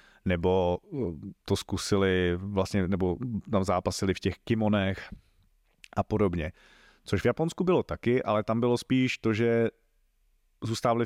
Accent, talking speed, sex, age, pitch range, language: native, 130 wpm, male, 30-49, 95-115 Hz, Czech